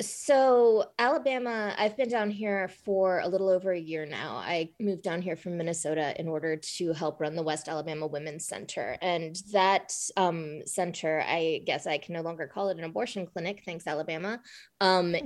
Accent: American